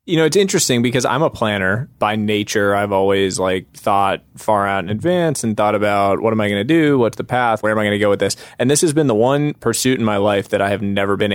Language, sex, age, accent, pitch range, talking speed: English, male, 20-39, American, 95-115 Hz, 280 wpm